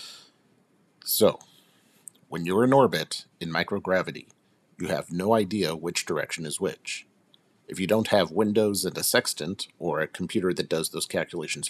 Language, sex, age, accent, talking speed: English, male, 50-69, American, 155 wpm